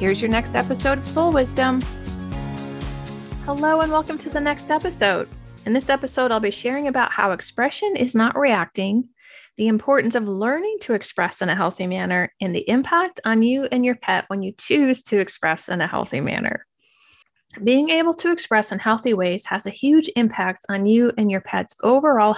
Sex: female